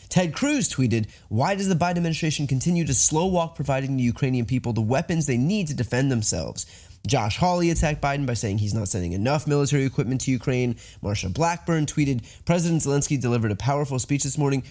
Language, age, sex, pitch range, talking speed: English, 20-39, male, 115-175 Hz, 195 wpm